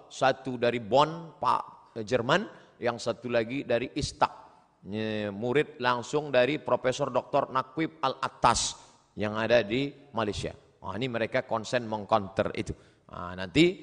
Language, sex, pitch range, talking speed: Indonesian, male, 110-160 Hz, 135 wpm